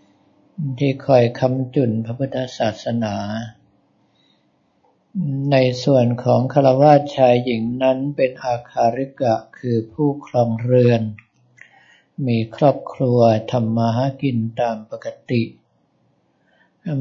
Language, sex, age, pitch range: Thai, male, 60-79, 115-135 Hz